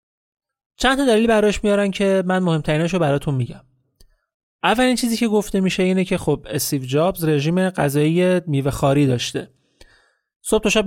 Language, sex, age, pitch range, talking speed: Persian, male, 30-49, 140-185 Hz, 155 wpm